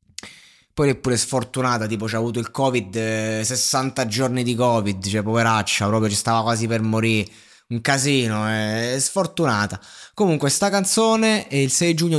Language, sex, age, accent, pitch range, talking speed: Italian, male, 20-39, native, 105-140 Hz, 165 wpm